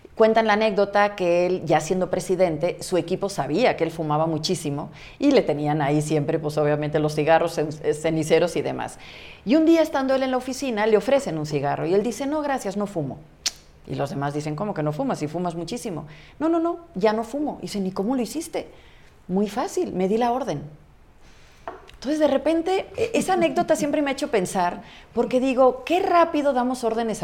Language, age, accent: Spanish, 40-59, Mexican